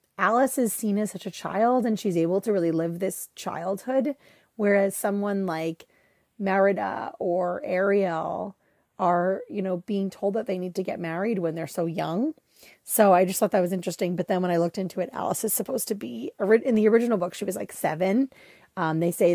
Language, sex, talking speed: English, female, 205 wpm